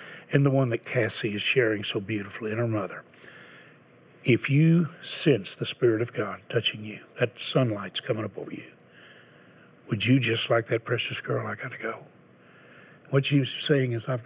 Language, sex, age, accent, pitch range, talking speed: English, male, 60-79, American, 110-135 Hz, 180 wpm